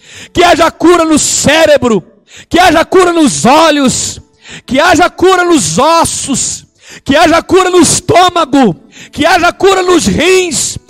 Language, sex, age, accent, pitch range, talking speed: Portuguese, male, 50-69, Brazilian, 270-340 Hz, 140 wpm